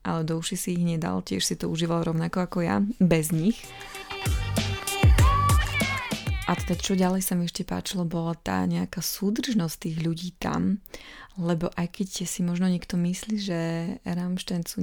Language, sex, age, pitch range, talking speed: Slovak, female, 20-39, 165-190 Hz, 165 wpm